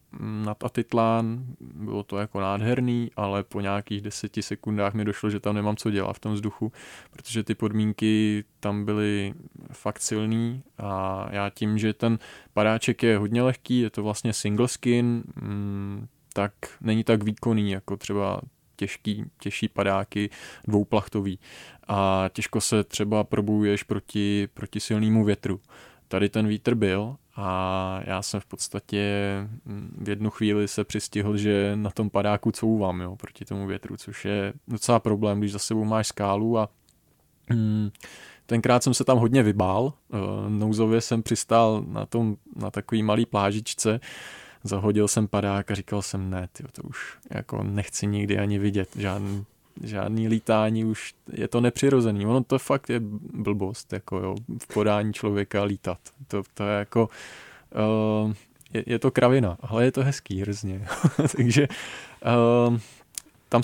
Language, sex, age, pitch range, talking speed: Czech, male, 20-39, 100-115 Hz, 145 wpm